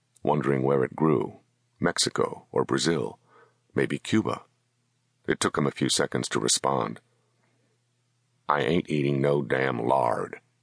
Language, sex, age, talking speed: English, male, 50-69, 125 wpm